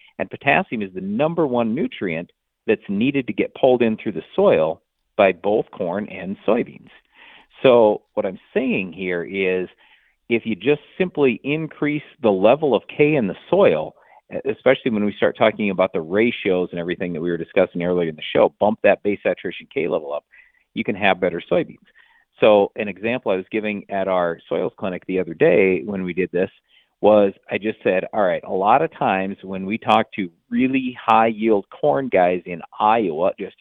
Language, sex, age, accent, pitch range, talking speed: English, male, 40-59, American, 95-125 Hz, 190 wpm